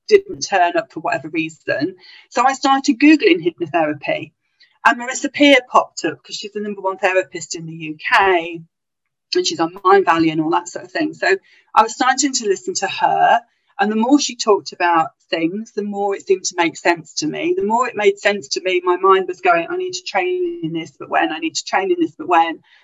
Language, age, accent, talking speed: English, 40-59, British, 225 wpm